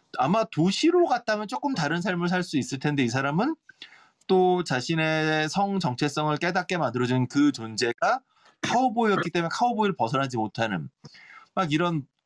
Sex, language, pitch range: male, Korean, 130-185 Hz